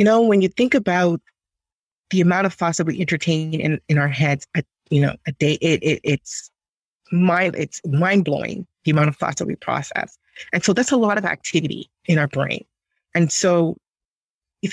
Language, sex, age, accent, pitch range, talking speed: English, female, 30-49, American, 160-195 Hz, 200 wpm